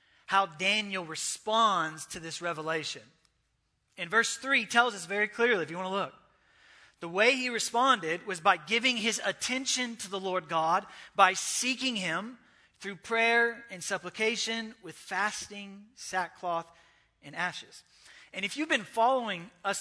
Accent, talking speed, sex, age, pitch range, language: American, 150 wpm, male, 30-49, 170-225 Hz, English